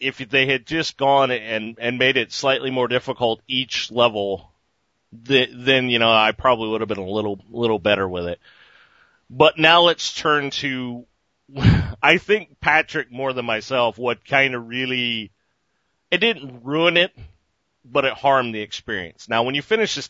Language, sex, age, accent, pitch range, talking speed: English, male, 40-59, American, 110-140 Hz, 175 wpm